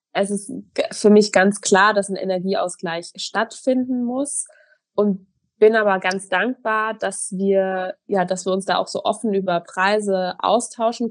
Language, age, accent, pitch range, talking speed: German, 20-39, German, 180-210 Hz, 155 wpm